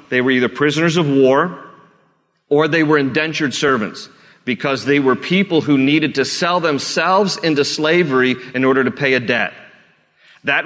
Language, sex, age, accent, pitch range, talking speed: English, male, 40-59, American, 130-155 Hz, 165 wpm